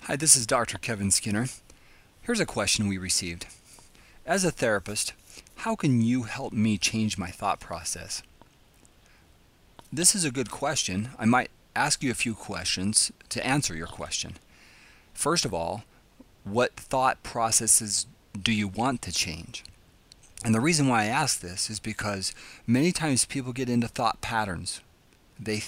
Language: English